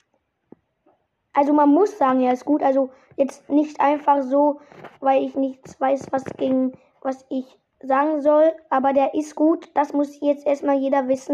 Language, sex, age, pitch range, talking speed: German, female, 20-39, 270-310 Hz, 175 wpm